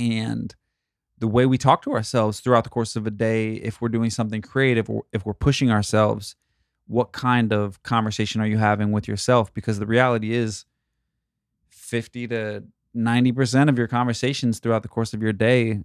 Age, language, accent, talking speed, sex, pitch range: 20-39, English, American, 180 wpm, male, 105-115 Hz